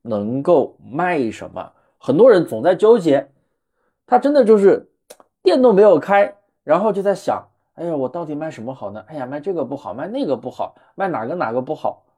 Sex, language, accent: male, Chinese, native